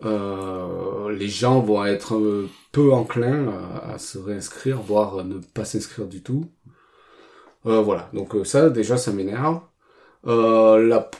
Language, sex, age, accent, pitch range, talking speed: French, male, 40-59, French, 105-130 Hz, 130 wpm